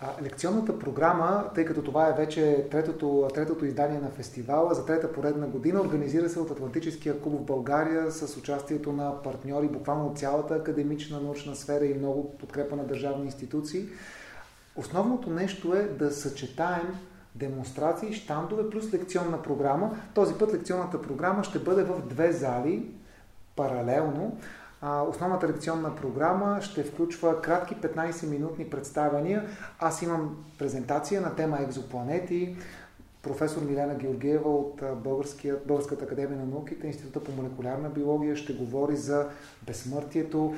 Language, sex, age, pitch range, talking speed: Bulgarian, male, 30-49, 145-165 Hz, 130 wpm